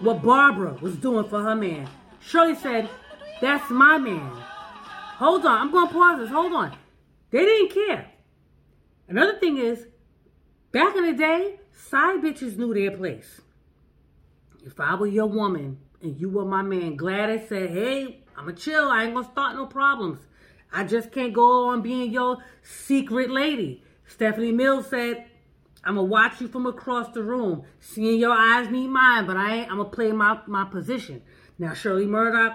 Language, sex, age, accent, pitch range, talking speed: English, female, 30-49, American, 195-260 Hz, 175 wpm